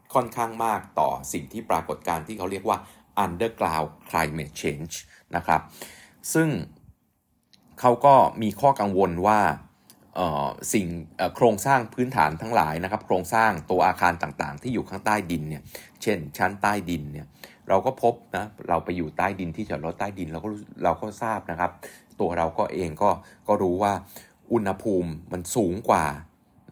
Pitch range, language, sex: 80-110 Hz, Thai, male